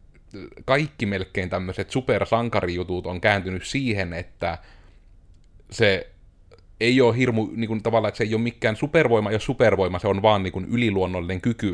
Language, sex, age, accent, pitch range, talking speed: Finnish, male, 30-49, native, 90-110 Hz, 145 wpm